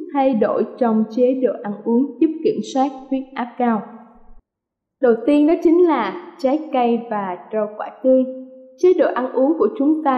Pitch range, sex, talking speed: 245-300 Hz, female, 185 wpm